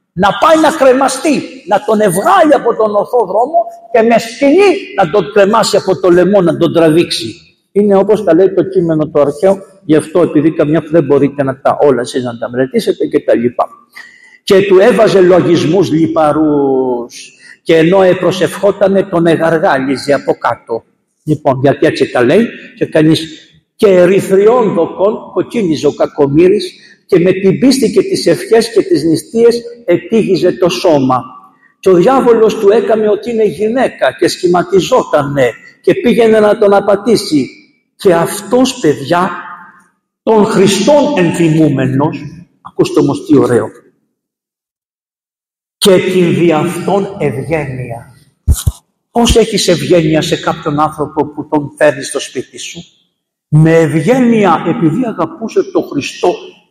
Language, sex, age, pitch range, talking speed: Greek, male, 50-69, 160-225 Hz, 140 wpm